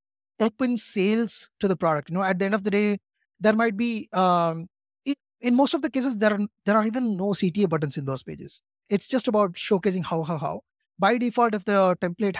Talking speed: 225 wpm